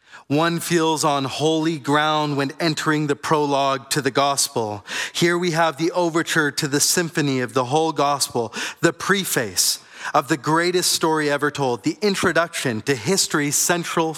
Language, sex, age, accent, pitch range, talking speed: English, male, 30-49, American, 145-175 Hz, 155 wpm